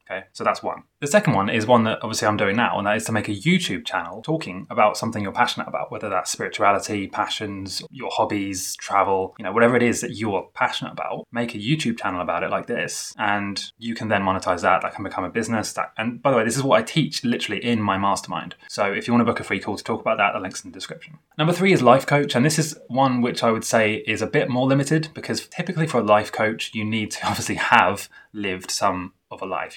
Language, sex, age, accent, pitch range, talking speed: English, male, 20-39, British, 100-130 Hz, 260 wpm